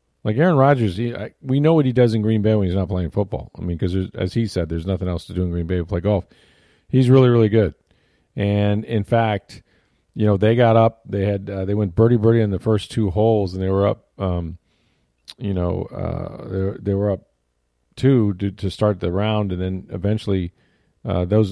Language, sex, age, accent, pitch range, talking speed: English, male, 40-59, American, 90-110 Hz, 230 wpm